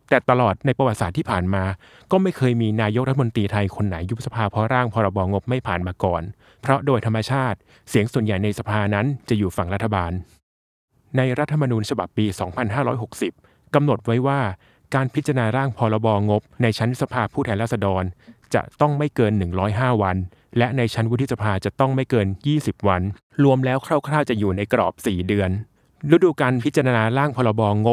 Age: 20-39